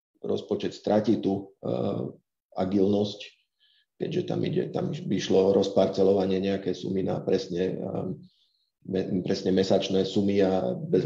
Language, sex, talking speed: Slovak, male, 115 wpm